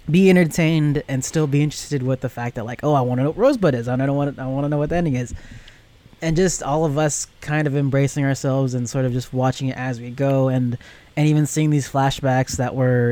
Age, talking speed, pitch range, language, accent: 20-39, 240 wpm, 125-150 Hz, English, American